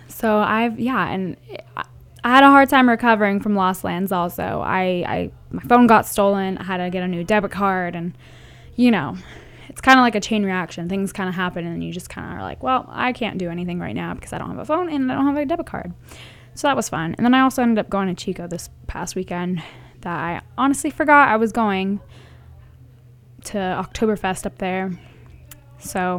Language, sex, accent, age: English, female, American, 10-29